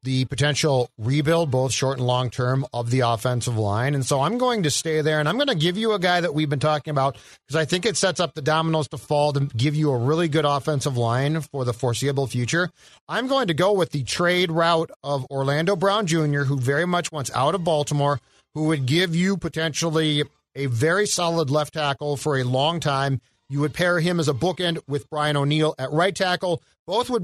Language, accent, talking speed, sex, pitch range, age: English, American, 225 wpm, male, 145-175 Hz, 40-59